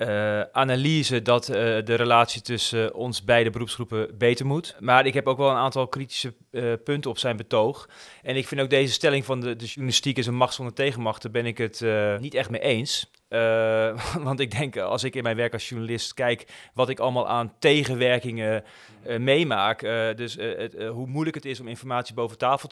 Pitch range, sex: 115-135 Hz, male